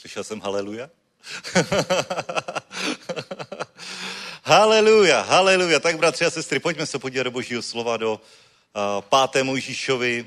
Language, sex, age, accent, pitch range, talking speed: Czech, male, 40-59, native, 110-130 Hz, 110 wpm